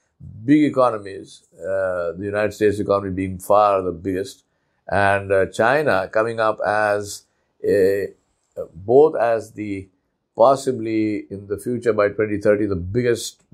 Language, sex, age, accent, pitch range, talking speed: English, male, 50-69, Indian, 95-120 Hz, 130 wpm